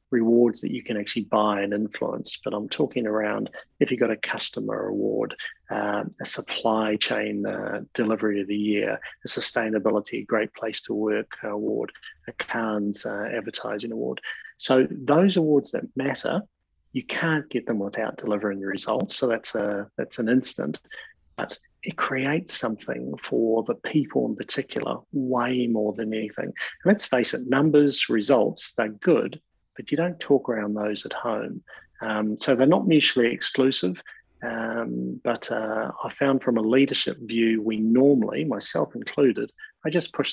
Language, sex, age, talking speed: English, male, 30-49, 160 wpm